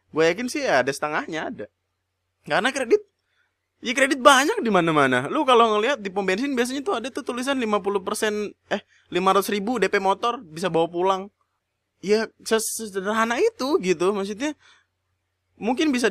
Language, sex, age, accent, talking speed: Indonesian, male, 20-39, native, 150 wpm